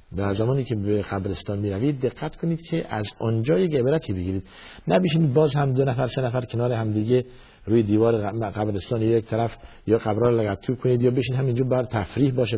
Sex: male